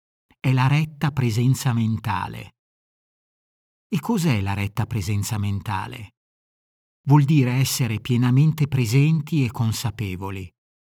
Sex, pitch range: male, 115-150 Hz